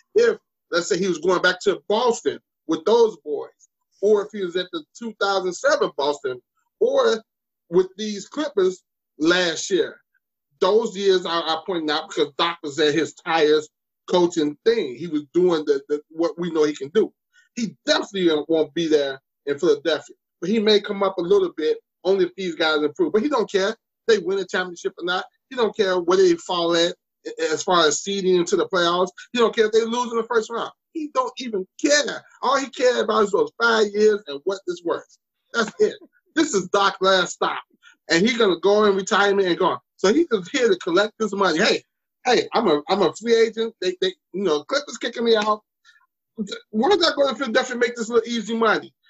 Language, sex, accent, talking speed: English, male, American, 210 wpm